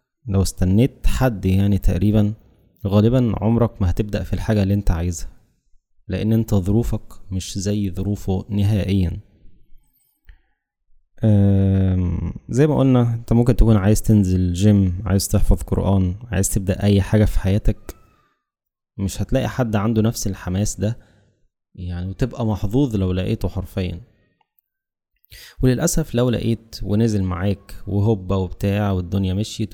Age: 20-39